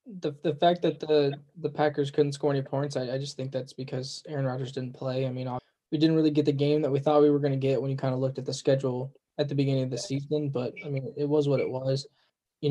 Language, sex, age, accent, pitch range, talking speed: English, male, 10-29, American, 140-160 Hz, 285 wpm